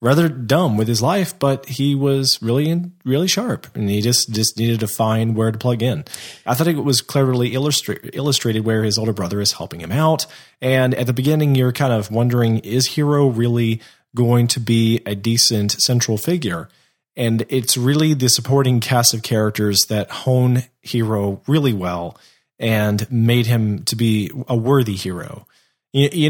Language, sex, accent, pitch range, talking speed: English, male, American, 110-140 Hz, 175 wpm